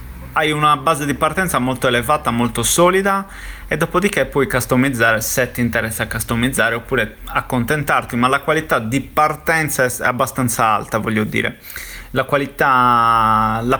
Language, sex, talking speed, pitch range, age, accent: Italian, male, 140 wpm, 120-135 Hz, 30-49, native